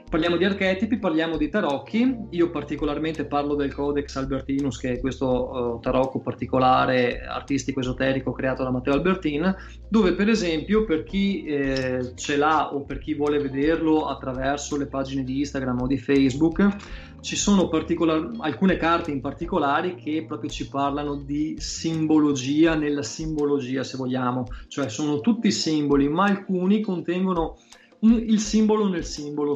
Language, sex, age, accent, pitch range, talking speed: Italian, male, 20-39, native, 135-165 Hz, 150 wpm